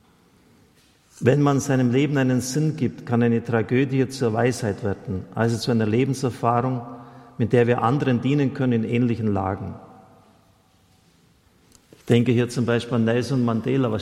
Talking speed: 150 wpm